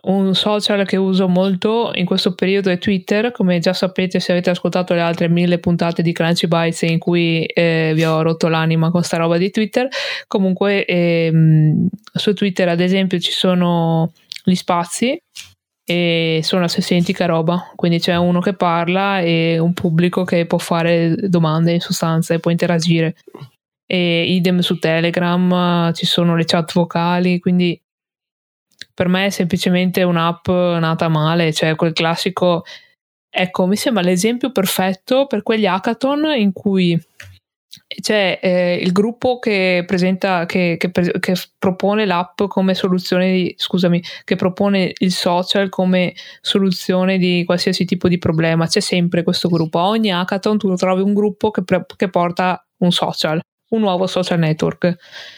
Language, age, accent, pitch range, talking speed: Italian, 20-39, native, 170-195 Hz, 155 wpm